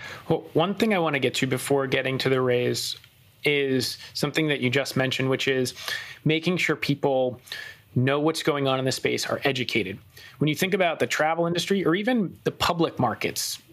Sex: male